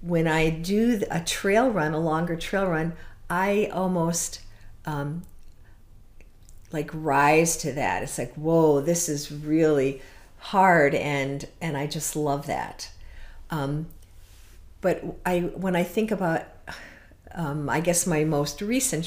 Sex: female